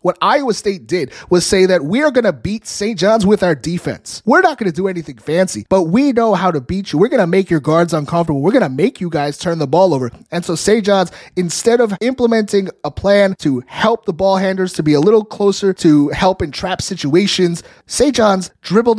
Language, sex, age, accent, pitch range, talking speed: English, male, 30-49, American, 150-195 Hz, 235 wpm